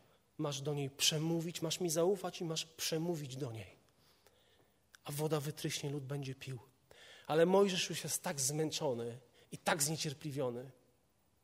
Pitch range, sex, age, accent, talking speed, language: 135-195 Hz, male, 40-59, native, 140 wpm, Polish